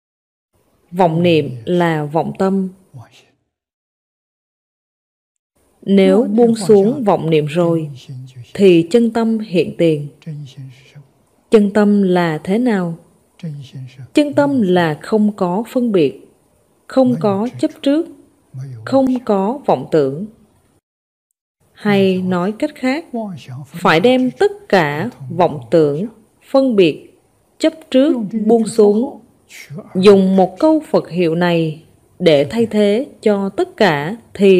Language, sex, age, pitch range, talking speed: Vietnamese, female, 20-39, 165-230 Hz, 115 wpm